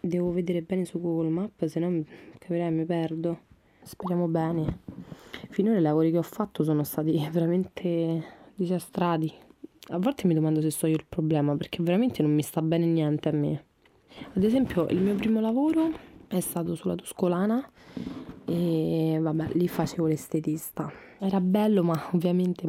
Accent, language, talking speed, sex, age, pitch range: native, Italian, 160 wpm, female, 20-39, 160-180 Hz